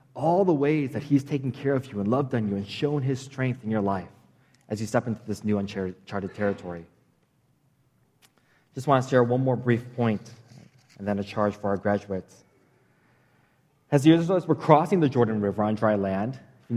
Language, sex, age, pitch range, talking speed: English, male, 20-39, 105-140 Hz, 195 wpm